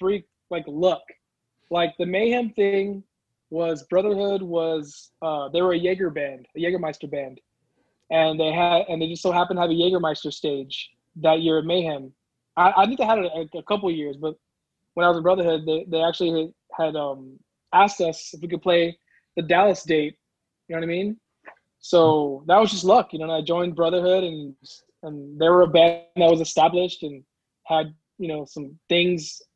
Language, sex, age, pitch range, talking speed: English, male, 20-39, 155-180 Hz, 195 wpm